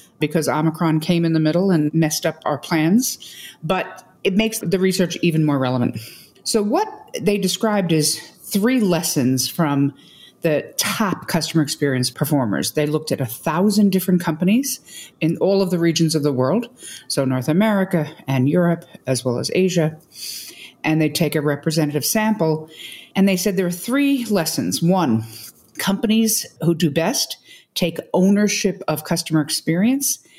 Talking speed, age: 155 wpm, 50-69